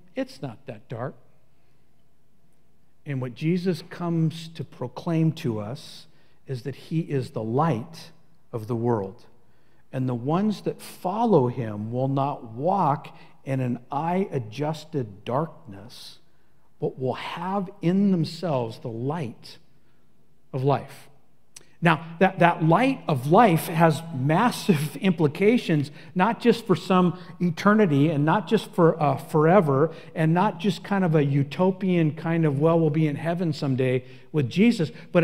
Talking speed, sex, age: 140 wpm, male, 50-69